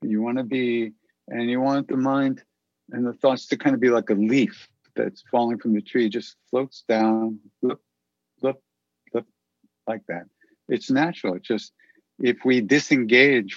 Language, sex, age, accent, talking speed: English, male, 60-79, American, 170 wpm